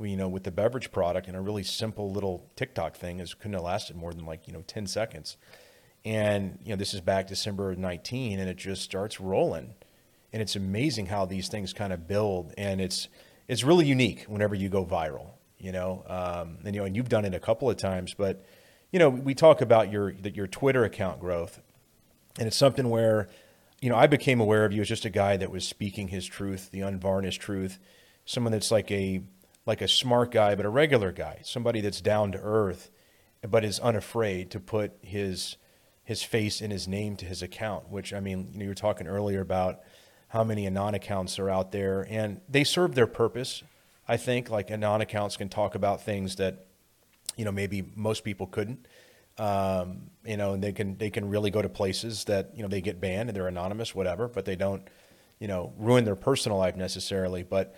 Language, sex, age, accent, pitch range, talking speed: English, male, 30-49, American, 95-110 Hz, 215 wpm